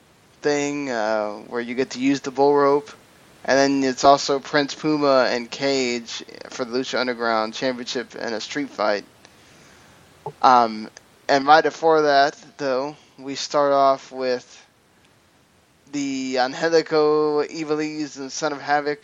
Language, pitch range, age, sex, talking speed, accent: English, 130-150 Hz, 10-29, male, 140 wpm, American